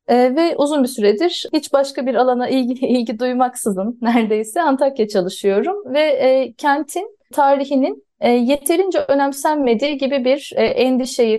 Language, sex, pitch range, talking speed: Turkish, female, 220-280 Hz, 130 wpm